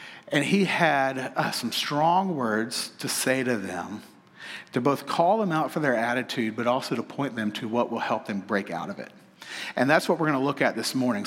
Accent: American